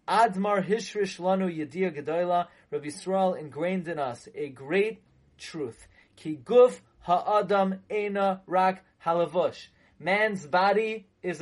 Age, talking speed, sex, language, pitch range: 30-49, 105 wpm, male, English, 170-215 Hz